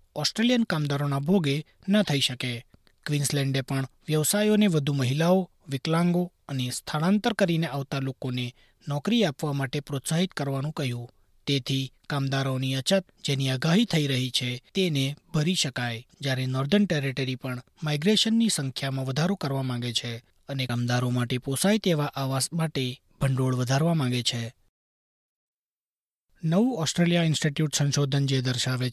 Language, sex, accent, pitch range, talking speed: Gujarati, male, native, 130-155 Hz, 125 wpm